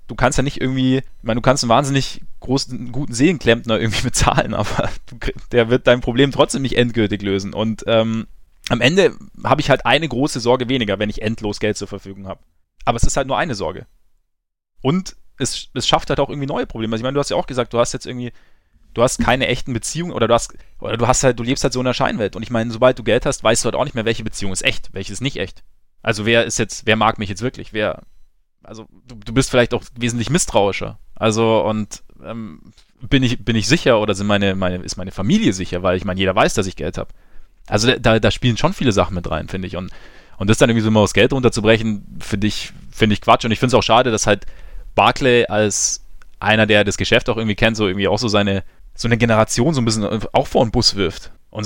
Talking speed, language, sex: 250 wpm, German, male